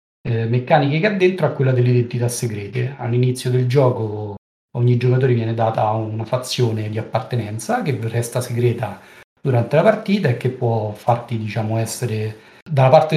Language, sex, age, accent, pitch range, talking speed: Italian, male, 40-59, native, 115-155 Hz, 155 wpm